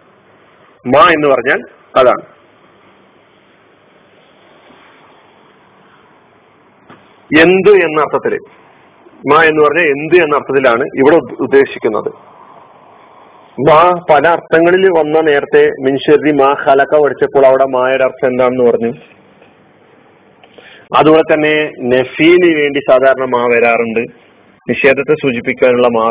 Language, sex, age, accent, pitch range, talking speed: Malayalam, male, 40-59, native, 130-175 Hz, 85 wpm